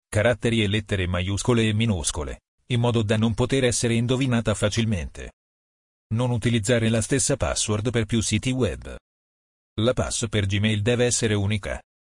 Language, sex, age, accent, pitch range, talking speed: Italian, male, 40-59, native, 105-120 Hz, 150 wpm